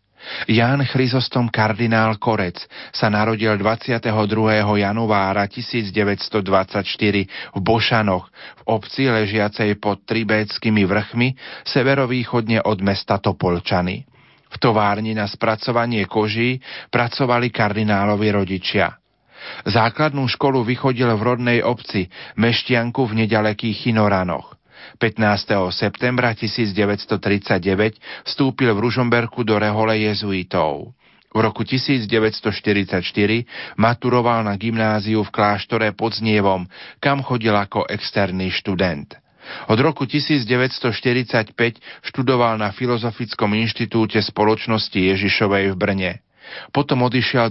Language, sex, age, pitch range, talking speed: Slovak, male, 40-59, 105-120 Hz, 95 wpm